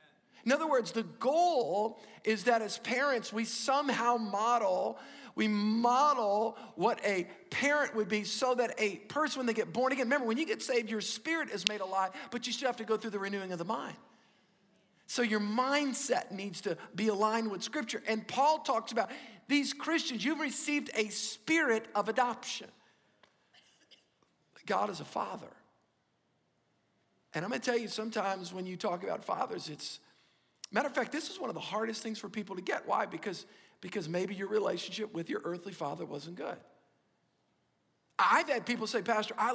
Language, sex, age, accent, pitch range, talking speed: English, male, 50-69, American, 200-245 Hz, 180 wpm